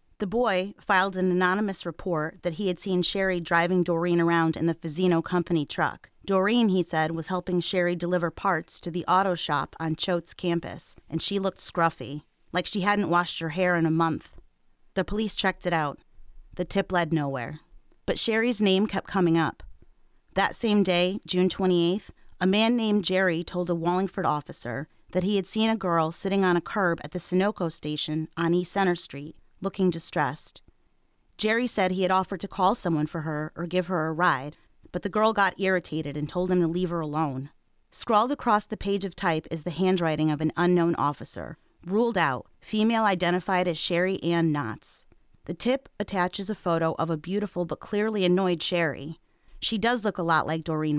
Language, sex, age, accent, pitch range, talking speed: English, female, 30-49, American, 165-195 Hz, 190 wpm